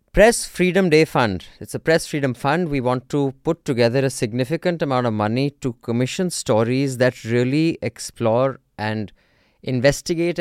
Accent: Indian